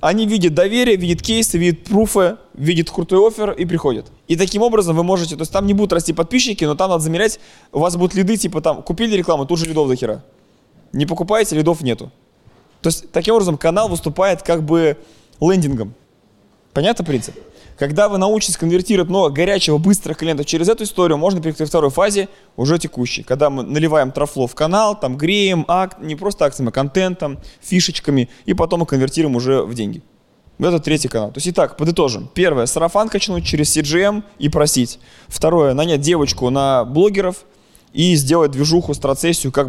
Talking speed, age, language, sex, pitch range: 185 wpm, 20-39, Russian, male, 140-180 Hz